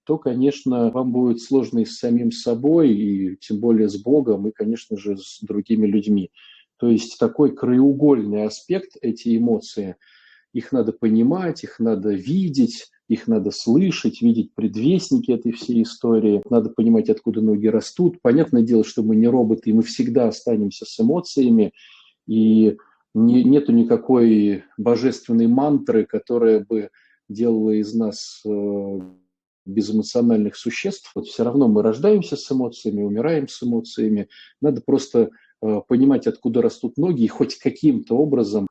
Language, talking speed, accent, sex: Russian, 145 wpm, native, male